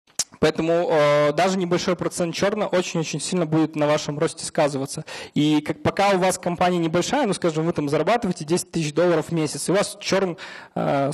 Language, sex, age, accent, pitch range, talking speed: Russian, male, 20-39, native, 155-195 Hz, 185 wpm